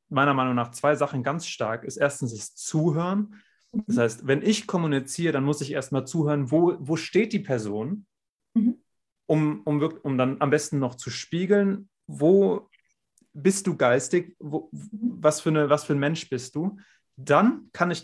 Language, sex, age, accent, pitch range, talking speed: German, male, 30-49, German, 135-180 Hz, 175 wpm